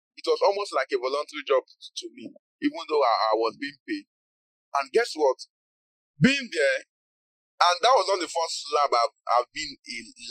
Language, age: English, 30-49